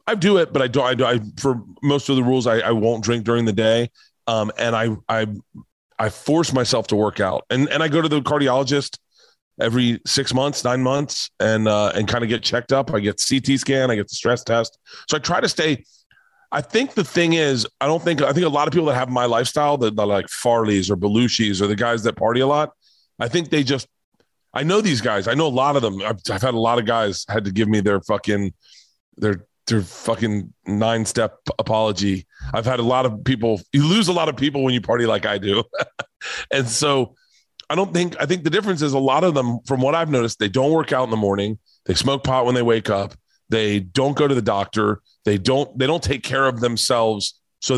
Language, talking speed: English, 240 wpm